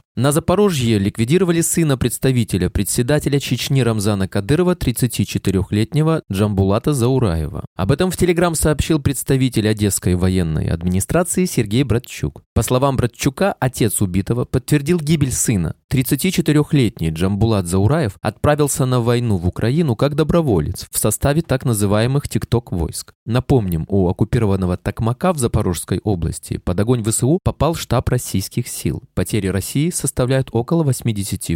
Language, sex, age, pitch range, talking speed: Russian, male, 20-39, 100-145 Hz, 125 wpm